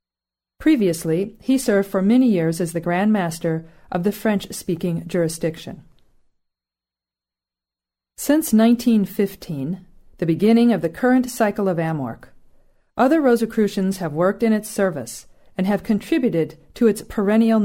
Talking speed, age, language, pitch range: 125 wpm, 40-59, English, 165-220 Hz